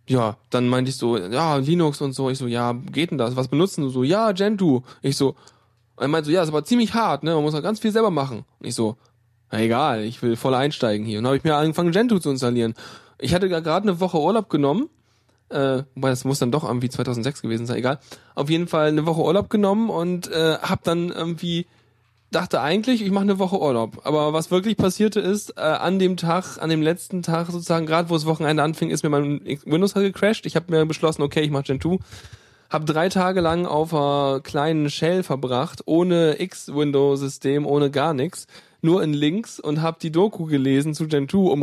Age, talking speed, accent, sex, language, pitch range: 10-29, 220 wpm, German, male, German, 135-175 Hz